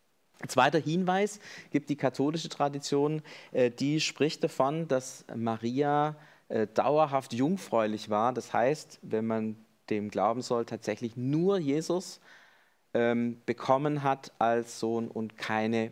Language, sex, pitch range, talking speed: German, male, 110-140 Hz, 115 wpm